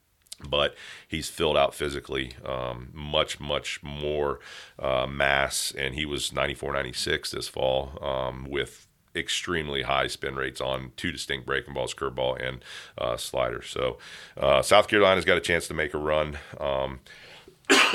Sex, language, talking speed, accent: male, English, 150 wpm, American